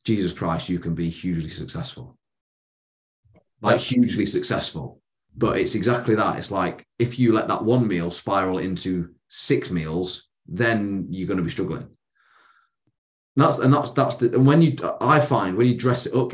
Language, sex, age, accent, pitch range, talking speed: English, male, 30-49, British, 95-125 Hz, 175 wpm